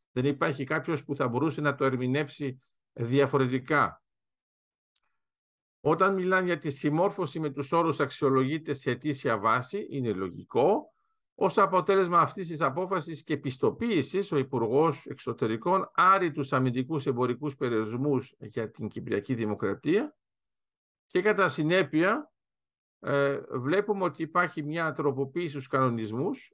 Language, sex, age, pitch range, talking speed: Greek, male, 50-69, 135-185 Hz, 120 wpm